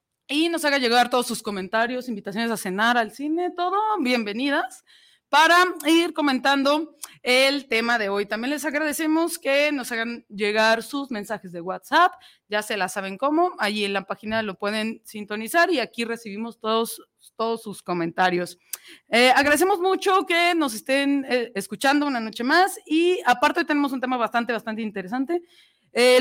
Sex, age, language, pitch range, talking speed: female, 30-49, Spanish, 215-295 Hz, 165 wpm